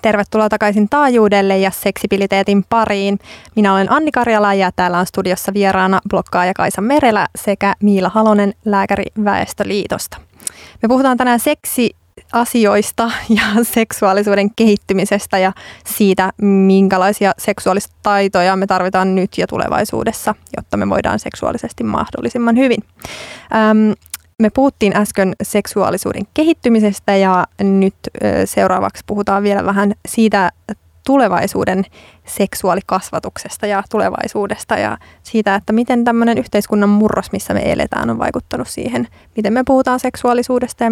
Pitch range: 195-225 Hz